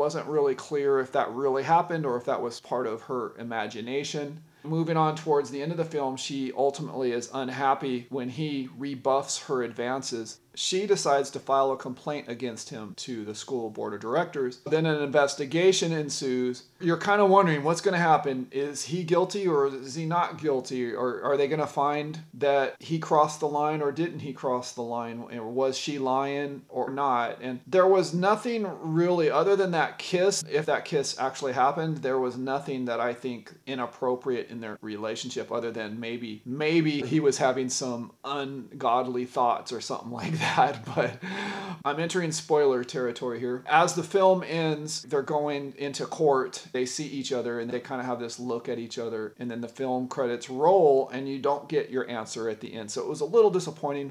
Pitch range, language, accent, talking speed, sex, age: 125-155 Hz, English, American, 195 wpm, male, 40-59